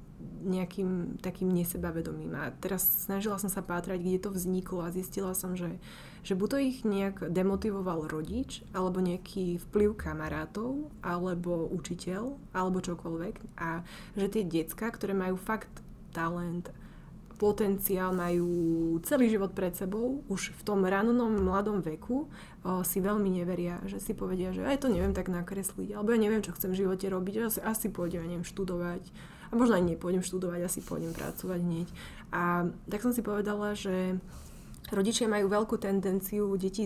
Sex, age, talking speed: female, 20-39, 155 wpm